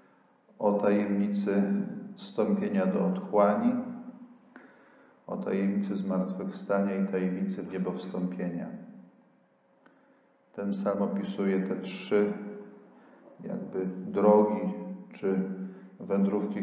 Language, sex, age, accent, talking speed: Polish, male, 40-59, native, 75 wpm